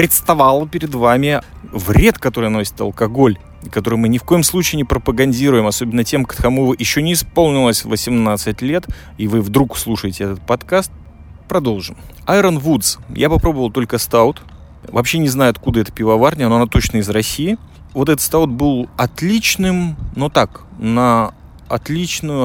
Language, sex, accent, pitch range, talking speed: Russian, male, native, 110-145 Hz, 145 wpm